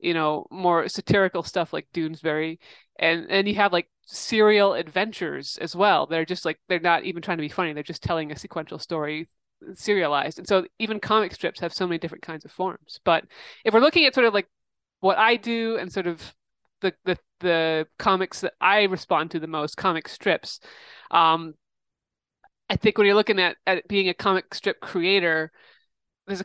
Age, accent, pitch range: 30-49, American, 165-195 Hz